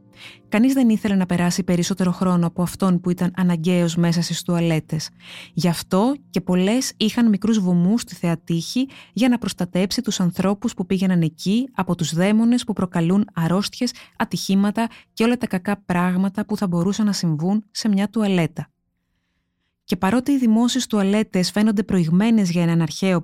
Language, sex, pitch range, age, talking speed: Greek, female, 175-225 Hz, 20-39, 160 wpm